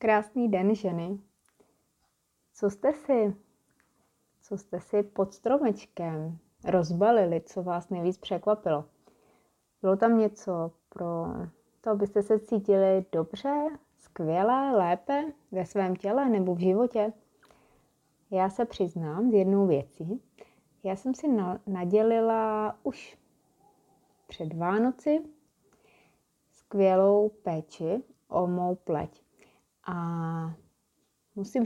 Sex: female